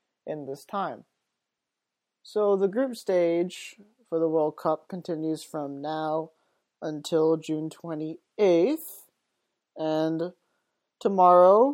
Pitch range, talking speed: 155-190 Hz, 95 wpm